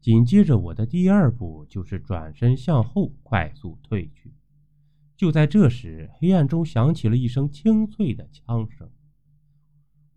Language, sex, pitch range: Chinese, male, 110-150 Hz